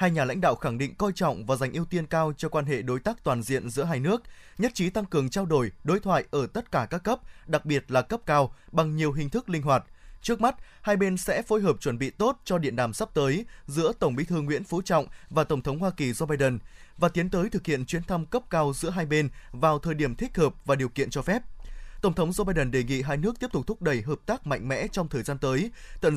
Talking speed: 275 wpm